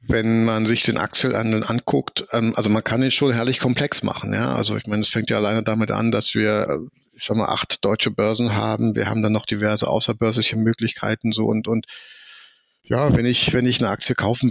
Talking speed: 220 wpm